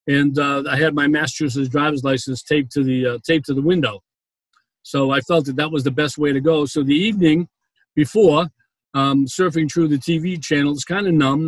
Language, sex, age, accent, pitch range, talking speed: English, male, 50-69, American, 140-170 Hz, 210 wpm